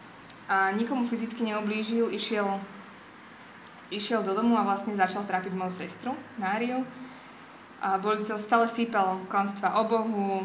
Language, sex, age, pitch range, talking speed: Slovak, female, 20-39, 190-230 Hz, 140 wpm